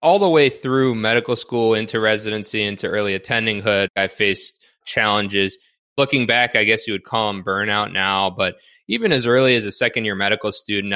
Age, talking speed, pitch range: 20-39, 190 wpm, 105-120 Hz